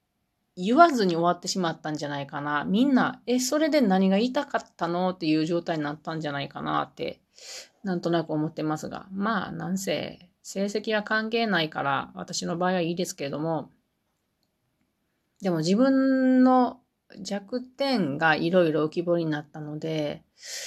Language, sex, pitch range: Japanese, female, 160-210 Hz